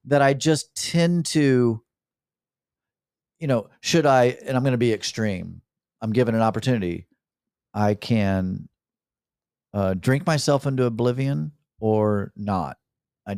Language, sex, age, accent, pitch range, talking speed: English, male, 40-59, American, 110-160 Hz, 130 wpm